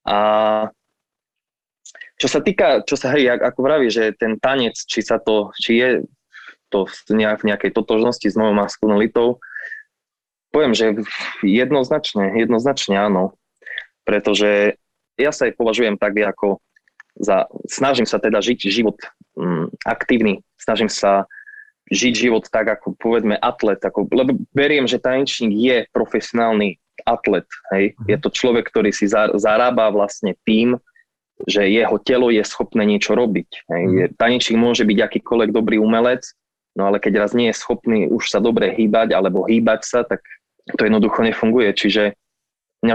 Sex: male